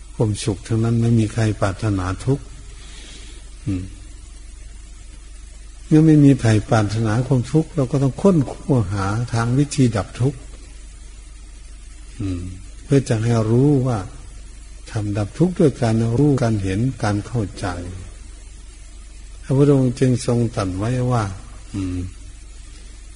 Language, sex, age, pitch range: Thai, male, 60-79, 90-120 Hz